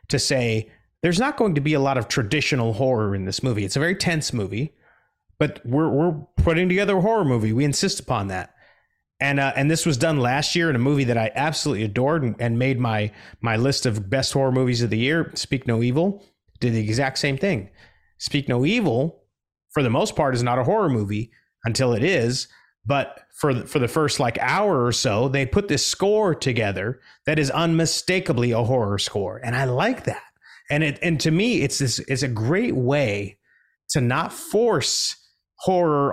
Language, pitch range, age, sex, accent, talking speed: English, 120-160 Hz, 30-49, male, American, 205 wpm